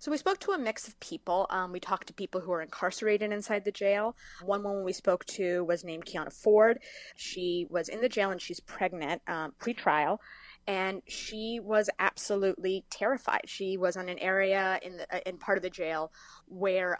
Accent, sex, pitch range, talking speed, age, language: American, female, 185-250 Hz, 200 wpm, 20-39, English